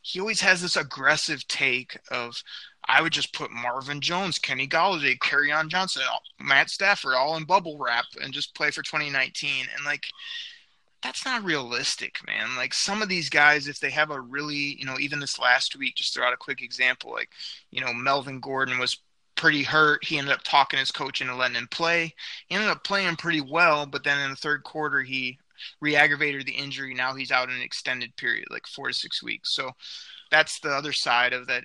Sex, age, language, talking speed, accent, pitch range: male, 20-39, English, 210 wpm, American, 130-160 Hz